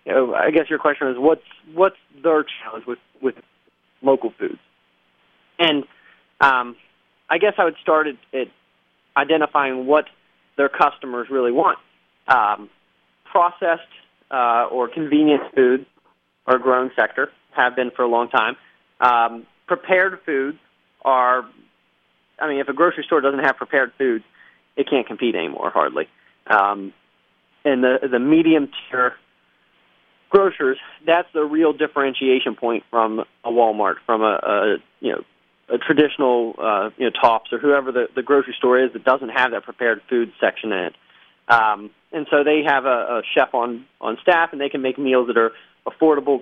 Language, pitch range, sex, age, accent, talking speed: English, 120-155 Hz, male, 30-49, American, 160 wpm